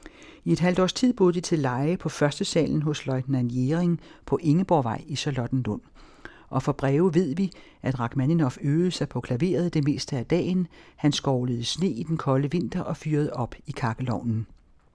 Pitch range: 130-170 Hz